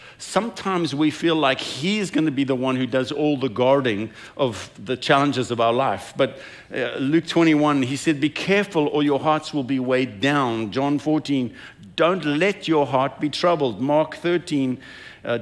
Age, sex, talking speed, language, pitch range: 50-69, male, 180 wpm, English, 130-155 Hz